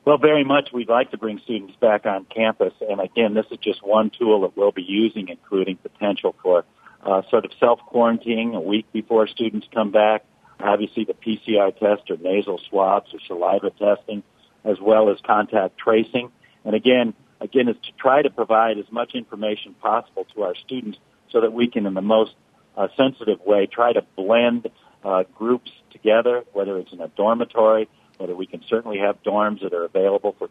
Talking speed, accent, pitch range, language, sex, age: 190 wpm, American, 100-120 Hz, English, male, 50-69